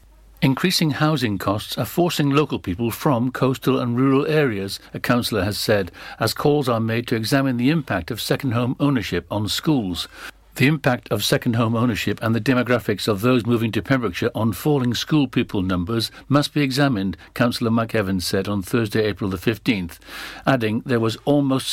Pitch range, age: 110-135 Hz, 60-79